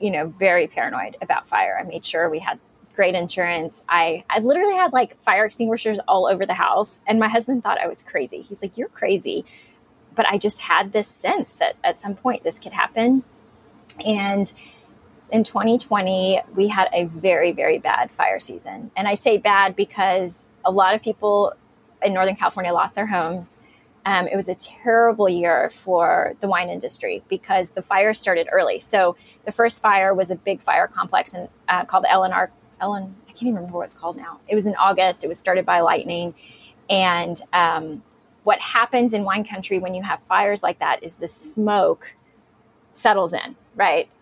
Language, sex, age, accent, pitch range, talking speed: English, female, 20-39, American, 185-230 Hz, 190 wpm